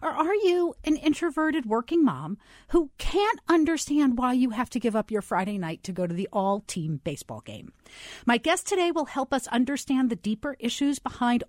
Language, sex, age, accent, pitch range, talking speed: English, female, 40-59, American, 185-285 Hz, 195 wpm